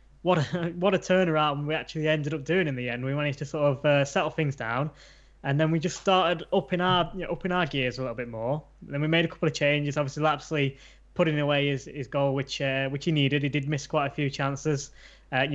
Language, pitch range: English, 140-175 Hz